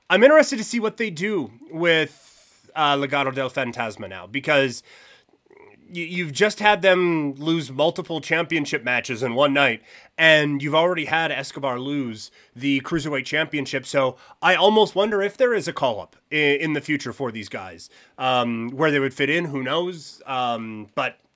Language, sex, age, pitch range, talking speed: English, male, 30-49, 130-170 Hz, 170 wpm